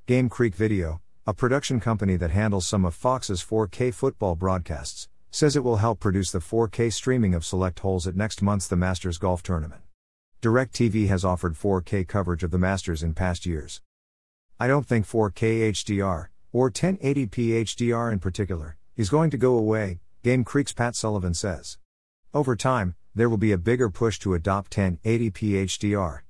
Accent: American